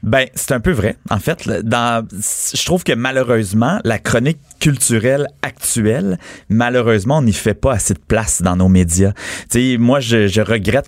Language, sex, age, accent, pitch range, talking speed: French, male, 30-49, Canadian, 110-130 Hz, 180 wpm